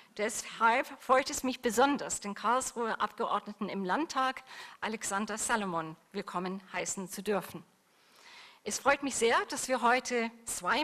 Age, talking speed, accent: 40-59, 135 wpm, German